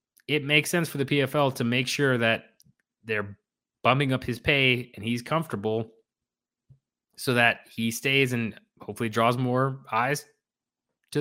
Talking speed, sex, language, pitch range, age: 150 wpm, male, English, 105-135 Hz, 20-39